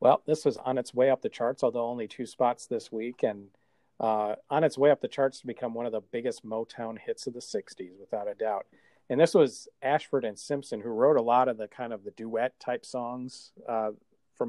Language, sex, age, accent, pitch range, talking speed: English, male, 40-59, American, 110-140 Hz, 235 wpm